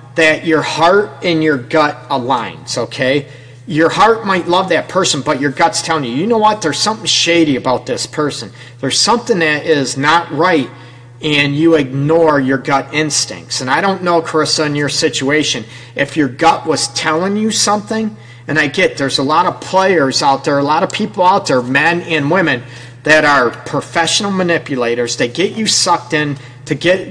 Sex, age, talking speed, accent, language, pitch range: male, 40-59, 190 wpm, American, English, 135-170 Hz